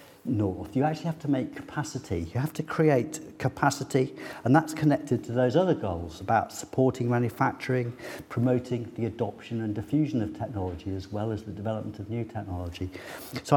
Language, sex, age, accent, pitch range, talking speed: English, male, 50-69, British, 100-130 Hz, 170 wpm